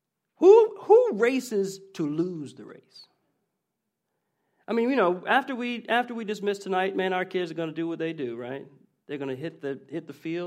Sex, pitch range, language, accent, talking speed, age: male, 165-220 Hz, English, American, 195 wpm, 40-59